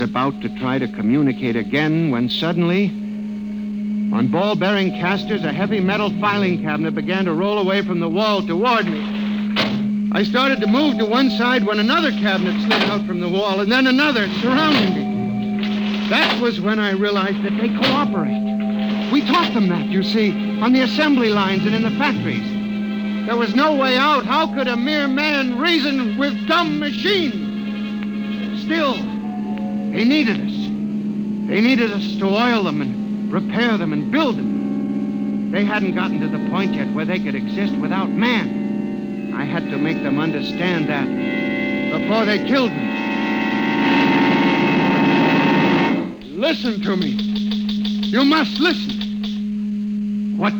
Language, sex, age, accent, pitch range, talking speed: English, male, 60-79, American, 205-225 Hz, 150 wpm